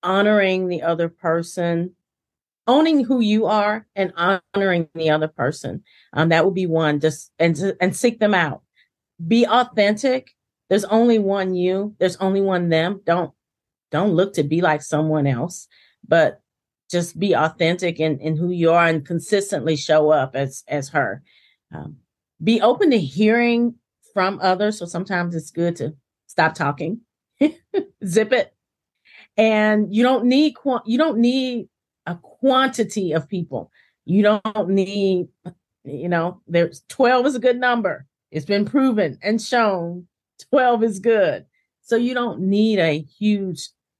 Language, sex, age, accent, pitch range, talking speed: English, female, 40-59, American, 160-215 Hz, 150 wpm